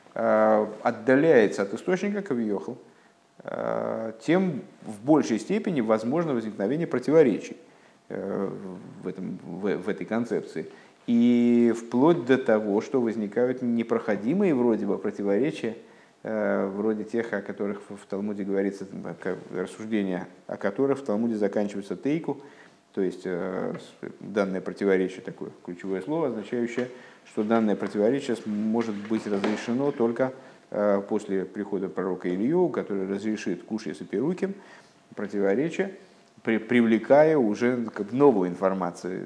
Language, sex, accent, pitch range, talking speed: Russian, male, native, 100-125 Hz, 105 wpm